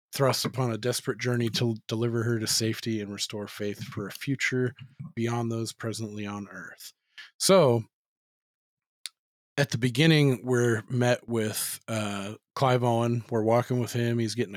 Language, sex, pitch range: English, male, 115-130 Hz